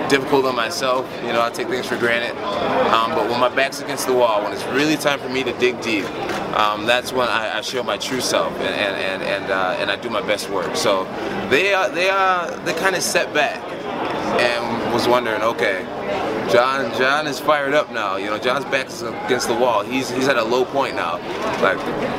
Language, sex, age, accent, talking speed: English, male, 20-39, American, 225 wpm